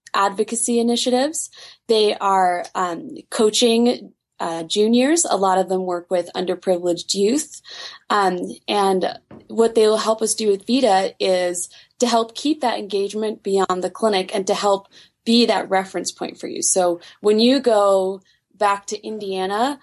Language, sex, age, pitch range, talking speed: English, female, 20-39, 190-235 Hz, 150 wpm